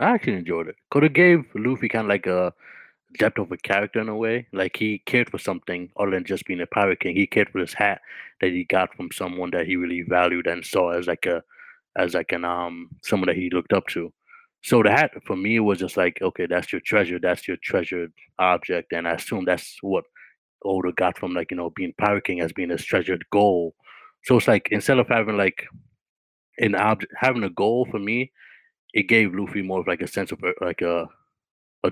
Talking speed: 230 wpm